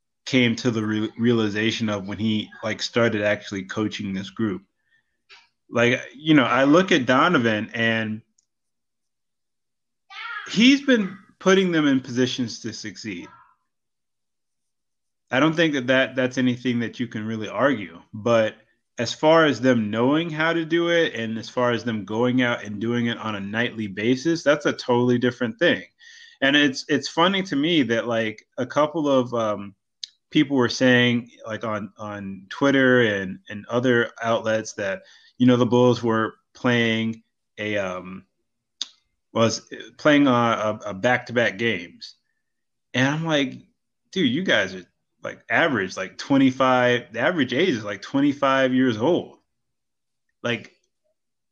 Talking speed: 155 wpm